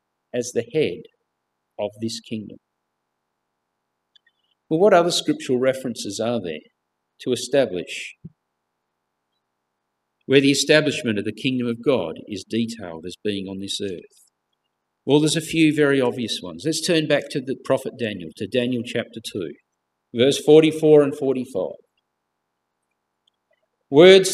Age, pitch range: 50-69, 125-180 Hz